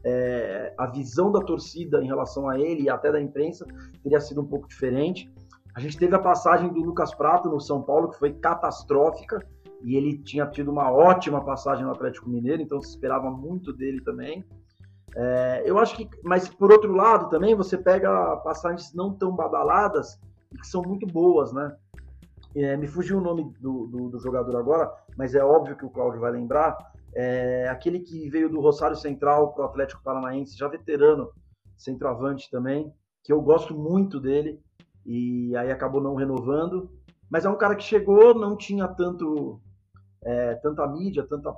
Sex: male